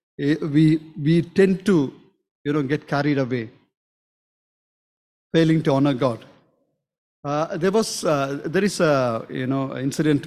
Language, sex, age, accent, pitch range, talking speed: English, male, 50-69, Indian, 150-200 Hz, 135 wpm